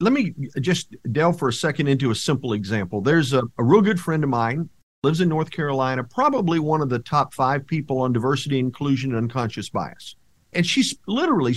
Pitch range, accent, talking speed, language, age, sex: 140-195 Hz, American, 200 wpm, English, 50-69, male